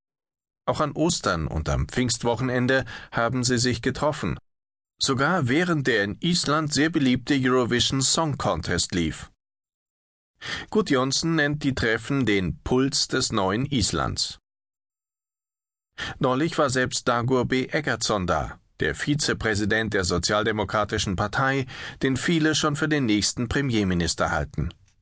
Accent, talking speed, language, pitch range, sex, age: German, 120 wpm, German, 105-135 Hz, male, 40-59